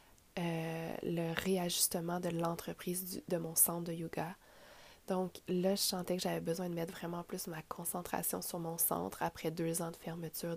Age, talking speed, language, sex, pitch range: 20-39, 175 wpm, French, female, 170-190 Hz